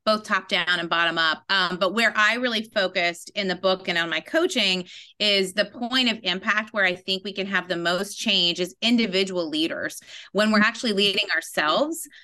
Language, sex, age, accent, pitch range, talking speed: English, female, 30-49, American, 180-245 Hz, 200 wpm